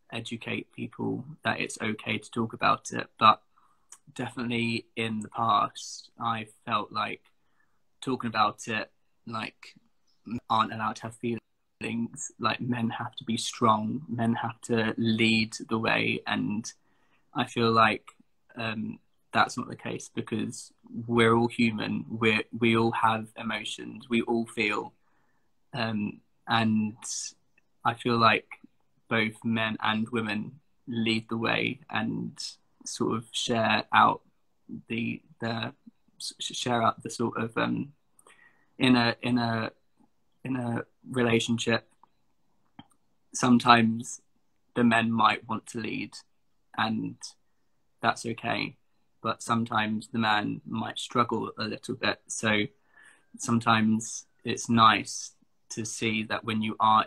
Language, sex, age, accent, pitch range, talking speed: English, male, 20-39, British, 110-120 Hz, 125 wpm